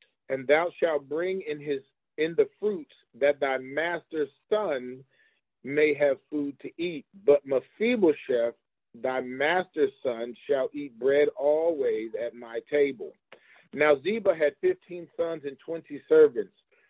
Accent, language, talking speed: American, English, 135 wpm